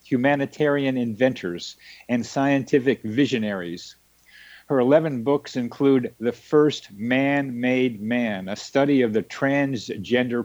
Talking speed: 105 wpm